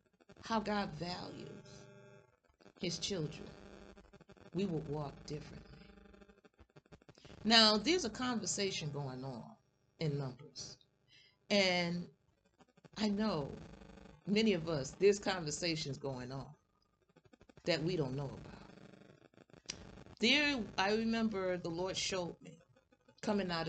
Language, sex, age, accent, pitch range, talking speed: English, female, 40-59, American, 150-205 Hz, 105 wpm